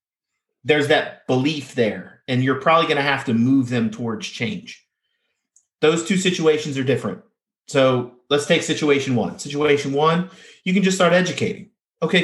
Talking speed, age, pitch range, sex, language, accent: 155 wpm, 30-49, 120-165 Hz, male, English, American